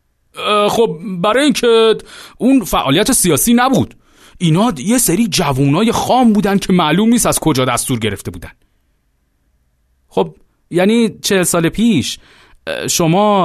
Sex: male